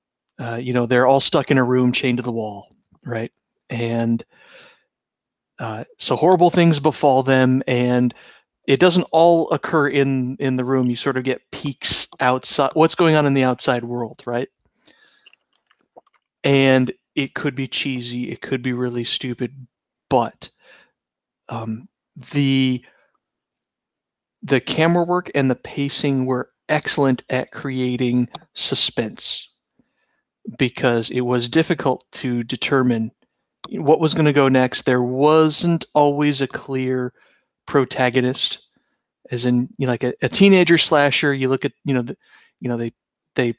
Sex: male